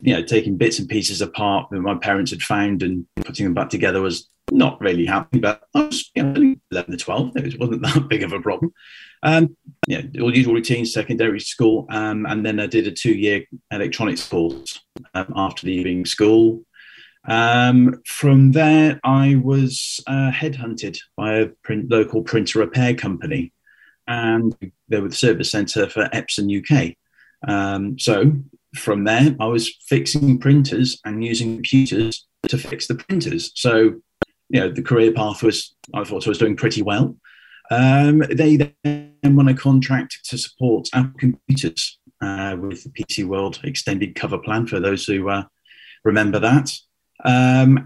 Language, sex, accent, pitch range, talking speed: English, male, British, 105-135 Hz, 165 wpm